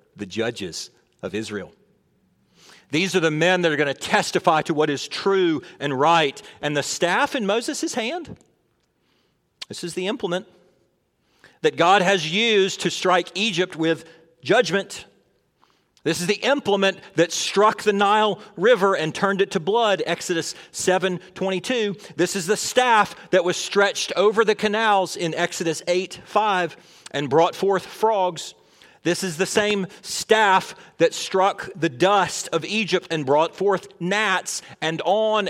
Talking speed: 150 wpm